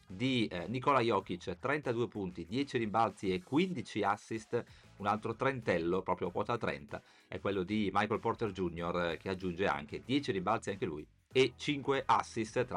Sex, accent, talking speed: male, native, 155 wpm